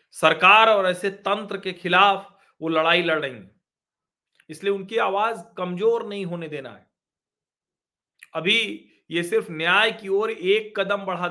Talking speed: 145 wpm